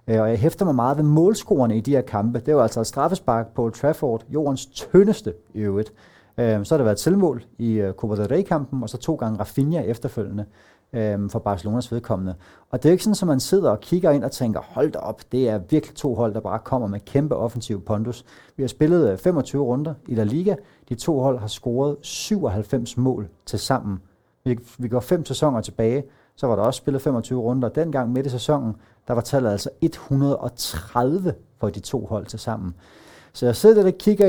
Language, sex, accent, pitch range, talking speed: Danish, male, native, 110-140 Hz, 200 wpm